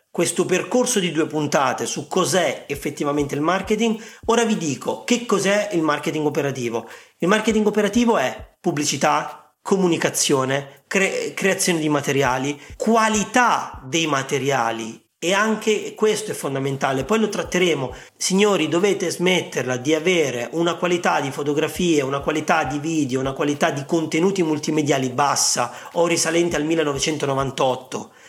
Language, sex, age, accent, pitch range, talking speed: Italian, male, 40-59, native, 145-185 Hz, 130 wpm